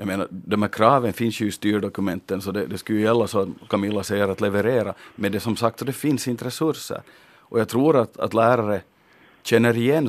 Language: Finnish